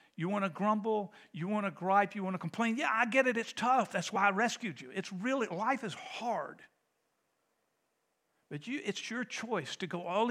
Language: English